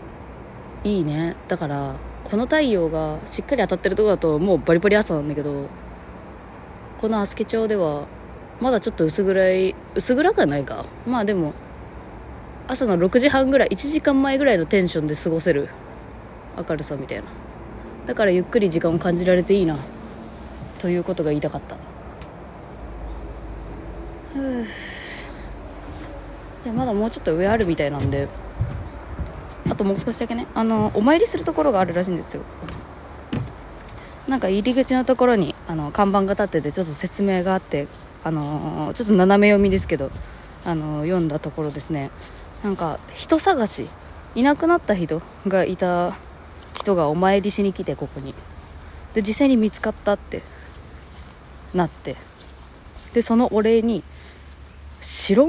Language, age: Japanese, 20-39